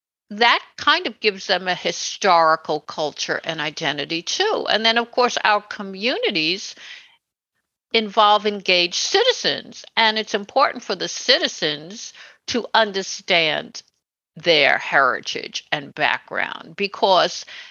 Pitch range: 175-235 Hz